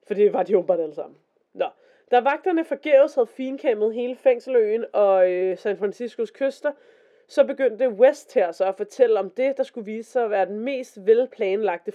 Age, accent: 20-39, native